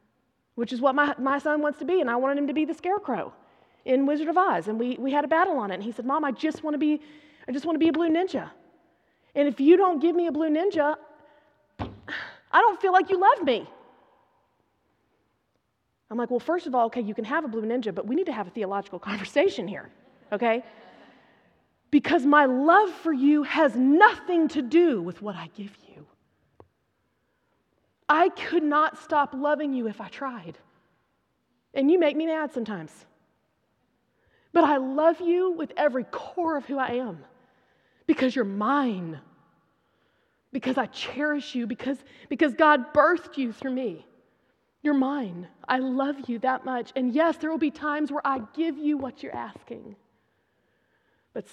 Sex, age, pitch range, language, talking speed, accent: female, 30-49, 240-310 Hz, English, 180 wpm, American